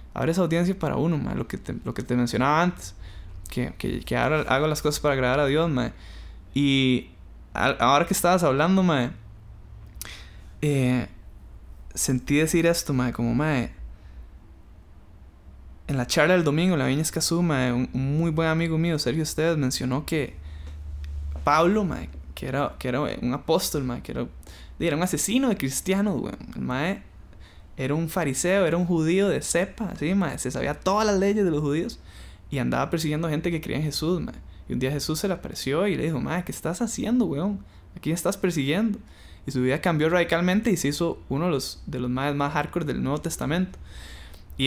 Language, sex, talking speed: Spanish, male, 200 wpm